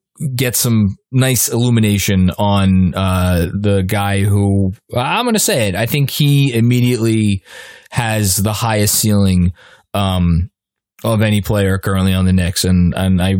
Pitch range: 95-125 Hz